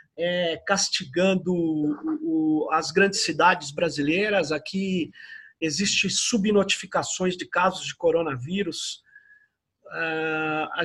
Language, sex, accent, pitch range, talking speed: Portuguese, male, Brazilian, 165-215 Hz, 70 wpm